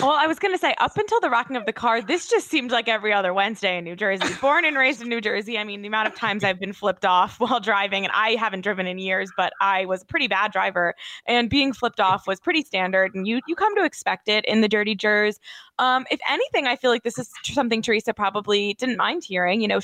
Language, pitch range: English, 200-265 Hz